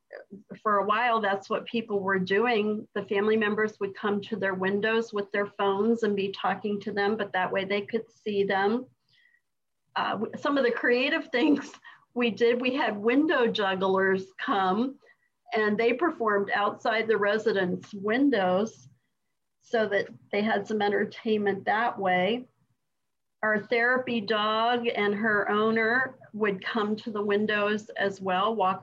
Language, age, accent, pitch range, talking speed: English, 40-59, American, 200-235 Hz, 150 wpm